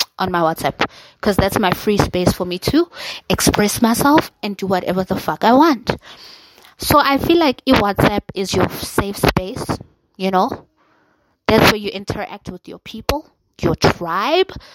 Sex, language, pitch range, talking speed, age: female, English, 180-225 Hz, 165 wpm, 20-39